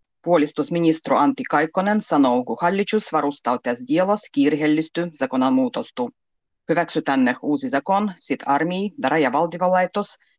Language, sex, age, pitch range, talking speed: Finnish, female, 30-49, 140-205 Hz, 100 wpm